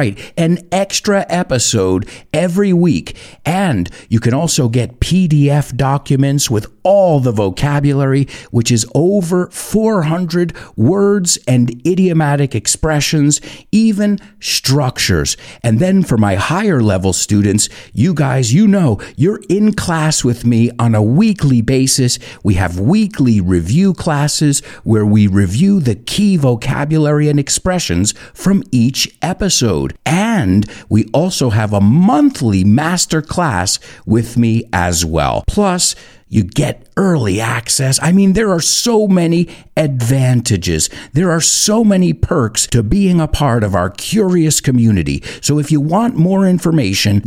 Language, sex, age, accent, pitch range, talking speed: English, male, 50-69, American, 115-175 Hz, 135 wpm